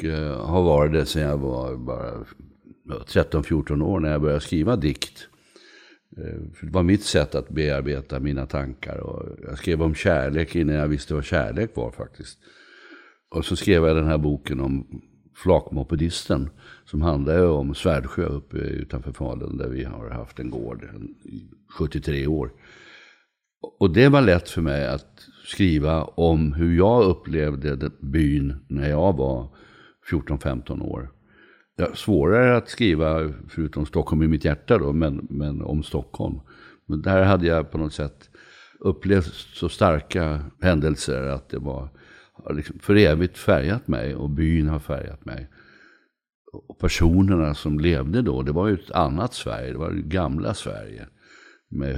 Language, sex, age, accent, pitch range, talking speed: English, male, 60-79, Swedish, 70-85 Hz, 150 wpm